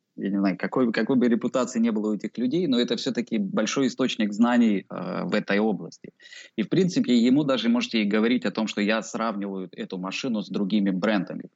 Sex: male